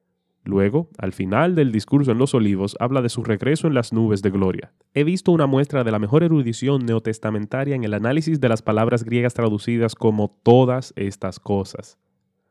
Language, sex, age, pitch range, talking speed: Spanish, male, 20-39, 105-140 Hz, 180 wpm